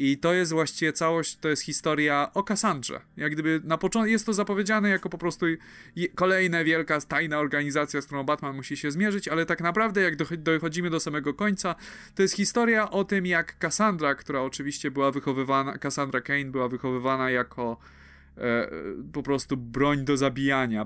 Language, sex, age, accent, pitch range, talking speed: Polish, male, 20-39, native, 125-165 Hz, 175 wpm